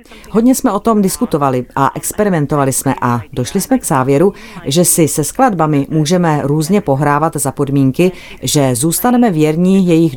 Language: Czech